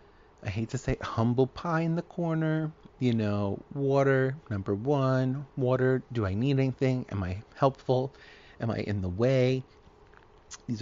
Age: 30-49